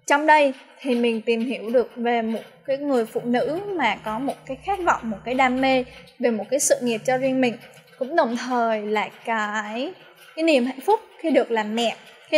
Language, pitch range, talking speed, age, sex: Vietnamese, 235-290 Hz, 220 wpm, 10-29, female